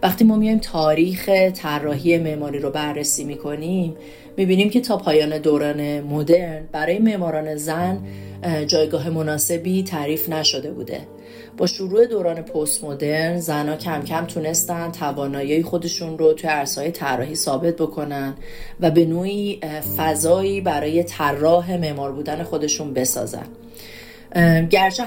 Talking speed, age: 120 wpm, 40-59